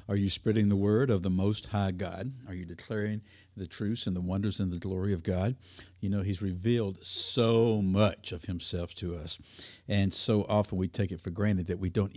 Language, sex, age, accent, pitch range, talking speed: English, male, 50-69, American, 95-115 Hz, 215 wpm